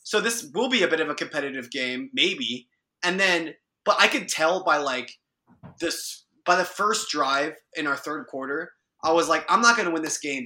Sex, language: male, English